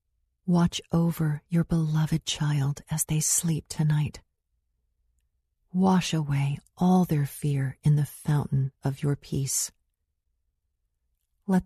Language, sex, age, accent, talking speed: English, female, 40-59, American, 110 wpm